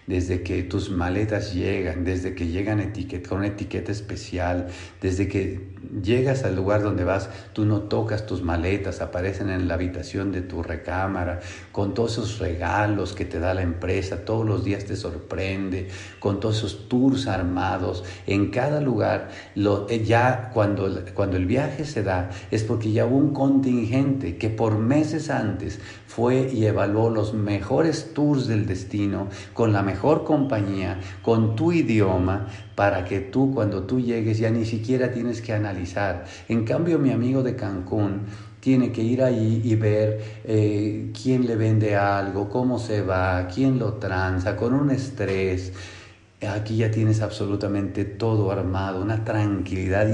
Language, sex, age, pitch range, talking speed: English, male, 50-69, 95-115 Hz, 160 wpm